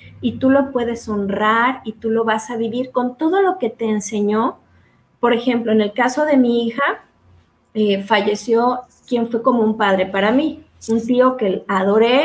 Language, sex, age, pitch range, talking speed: Spanish, female, 20-39, 215-265 Hz, 185 wpm